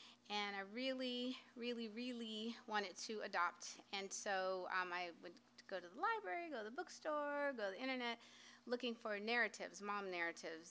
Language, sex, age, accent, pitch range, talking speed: English, female, 30-49, American, 185-210 Hz, 170 wpm